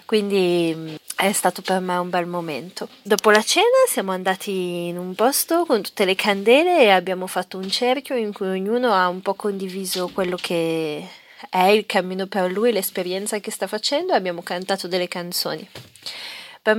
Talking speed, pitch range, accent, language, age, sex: 175 wpm, 185-220 Hz, native, Italian, 30-49, female